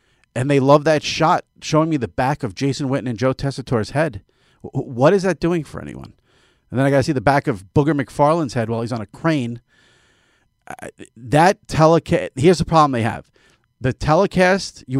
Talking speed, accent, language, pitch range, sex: 195 wpm, American, English, 115-150 Hz, male